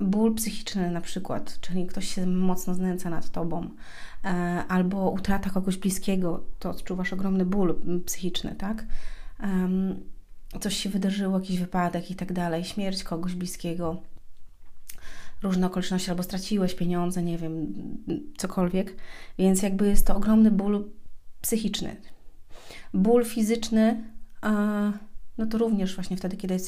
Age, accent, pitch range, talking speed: 30-49, native, 175-195 Hz, 125 wpm